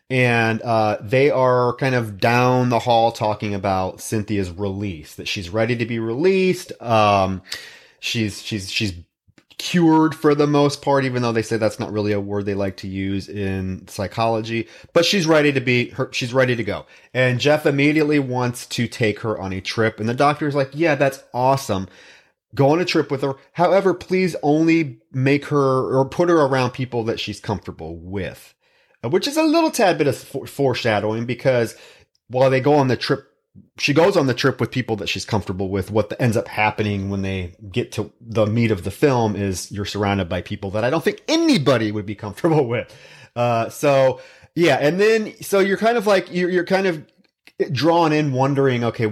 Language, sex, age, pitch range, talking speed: English, male, 30-49, 105-145 Hz, 200 wpm